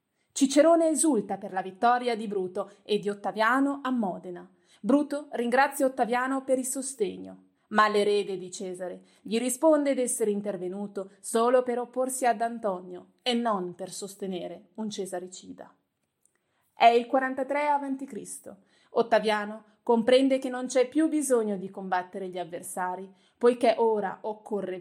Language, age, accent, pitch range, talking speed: Italian, 30-49, native, 190-245 Hz, 135 wpm